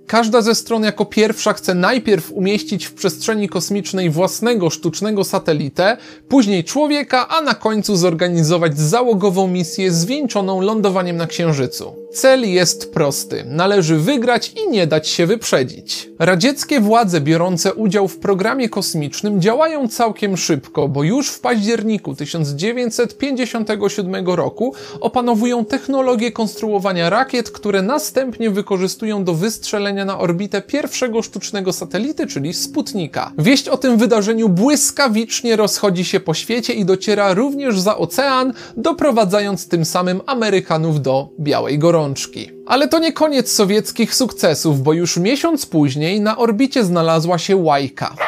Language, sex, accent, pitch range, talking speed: Polish, male, native, 180-235 Hz, 130 wpm